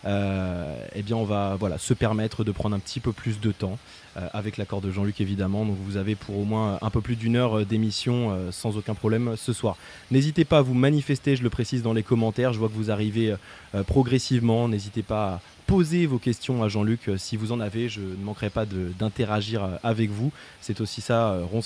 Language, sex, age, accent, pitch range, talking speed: French, male, 20-39, French, 100-120 Hz, 235 wpm